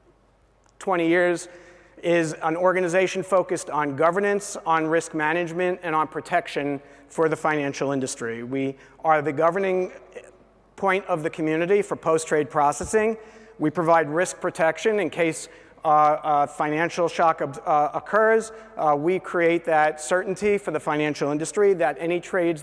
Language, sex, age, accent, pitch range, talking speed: English, male, 40-59, American, 155-180 Hz, 140 wpm